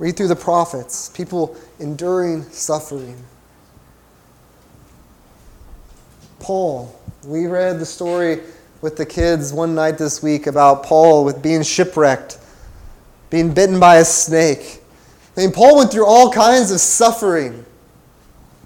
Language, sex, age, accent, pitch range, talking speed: English, male, 20-39, American, 150-190 Hz, 120 wpm